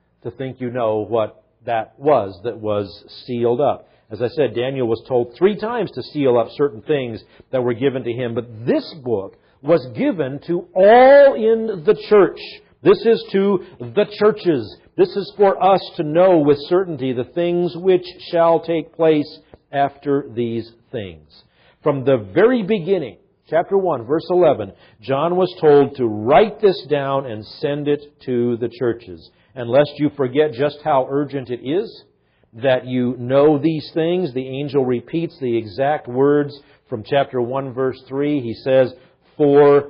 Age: 50-69